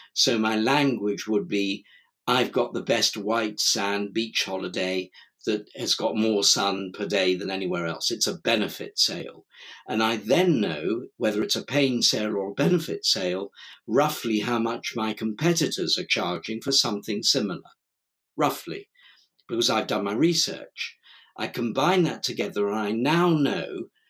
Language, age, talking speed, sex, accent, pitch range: English, 50-69, 160 wpm, male, British, 105-140 Hz